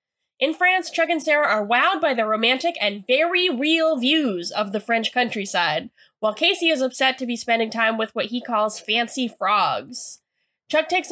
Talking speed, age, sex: 185 wpm, 10-29, female